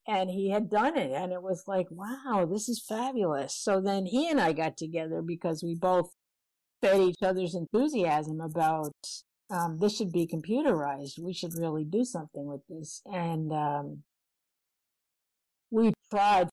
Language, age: English, 50-69